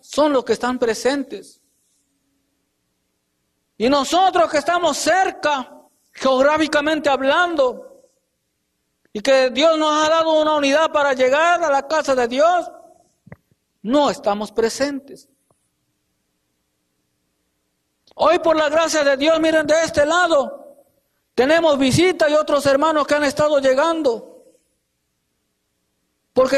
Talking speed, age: 115 wpm, 50-69